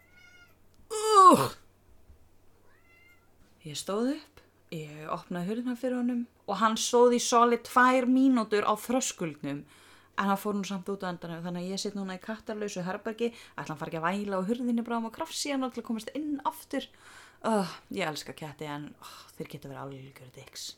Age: 20-39